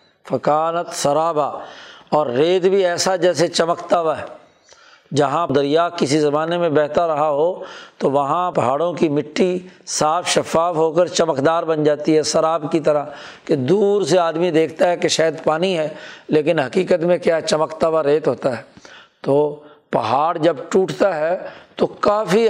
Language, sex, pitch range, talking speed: Urdu, male, 150-180 Hz, 155 wpm